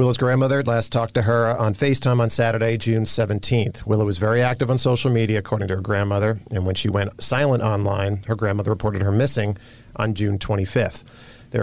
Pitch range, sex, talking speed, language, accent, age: 105-120 Hz, male, 195 wpm, English, American, 40-59